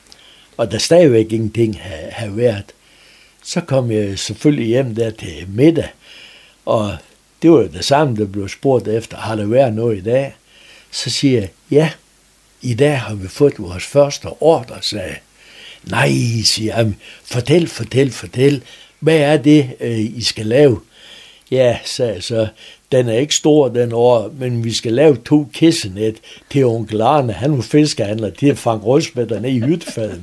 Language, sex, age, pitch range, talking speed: Danish, male, 60-79, 110-145 Hz, 165 wpm